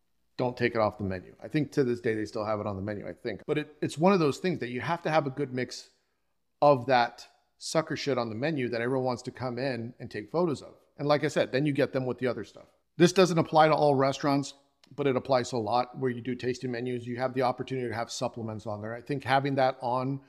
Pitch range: 120-145 Hz